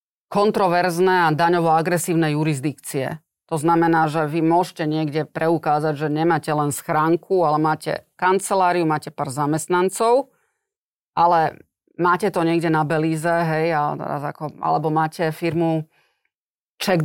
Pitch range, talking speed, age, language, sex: 155-180 Hz, 115 wpm, 30-49, Slovak, female